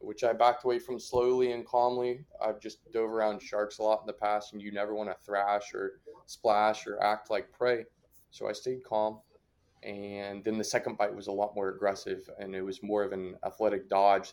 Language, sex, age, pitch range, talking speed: English, male, 20-39, 100-115 Hz, 220 wpm